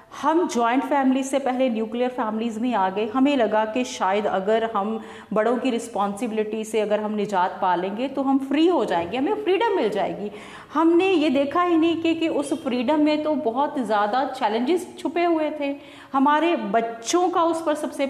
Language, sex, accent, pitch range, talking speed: Hindi, female, native, 215-285 Hz, 185 wpm